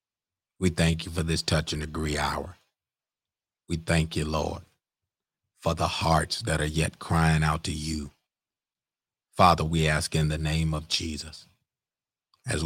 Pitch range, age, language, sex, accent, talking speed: 80-85 Hz, 40-59, English, male, American, 150 wpm